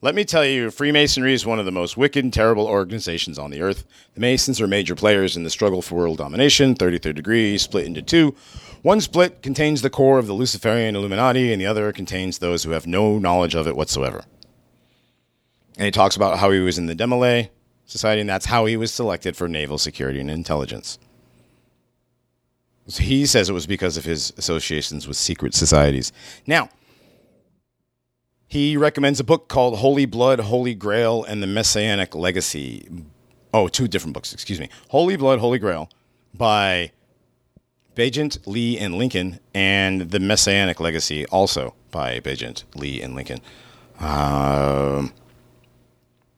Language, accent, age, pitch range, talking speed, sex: English, American, 50-69, 85-120 Hz, 165 wpm, male